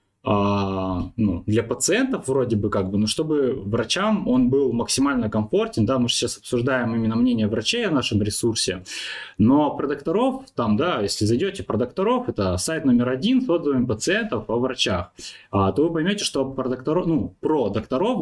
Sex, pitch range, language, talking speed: male, 115-160 Hz, Russian, 180 wpm